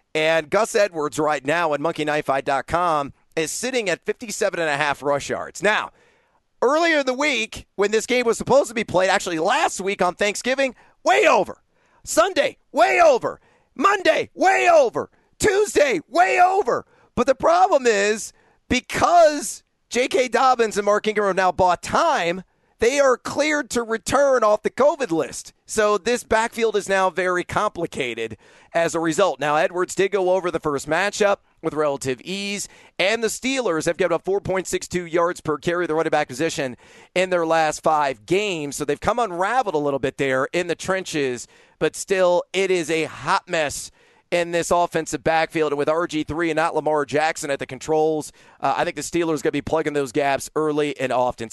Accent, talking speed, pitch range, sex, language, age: American, 175 wpm, 155-220 Hz, male, English, 40-59